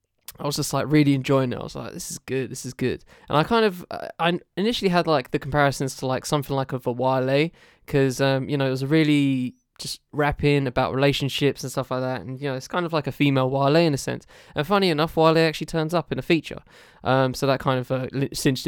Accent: British